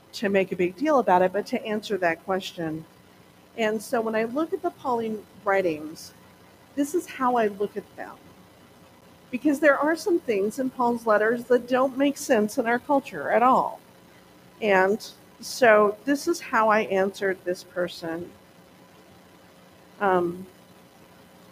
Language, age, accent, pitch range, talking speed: English, 50-69, American, 180-255 Hz, 155 wpm